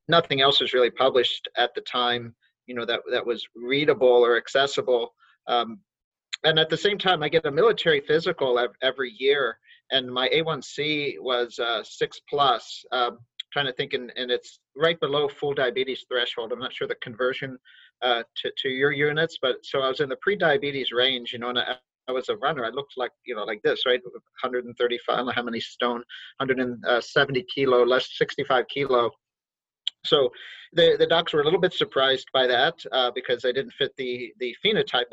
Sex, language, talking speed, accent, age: male, English, 195 wpm, American, 40-59